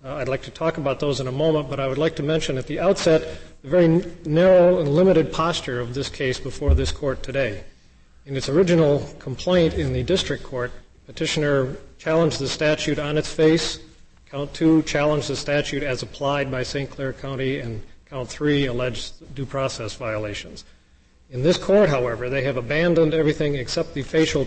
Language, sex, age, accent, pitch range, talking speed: English, male, 40-59, American, 125-160 Hz, 185 wpm